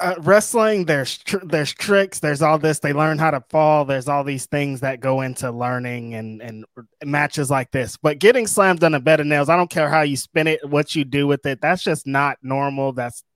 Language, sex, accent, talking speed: English, male, American, 235 wpm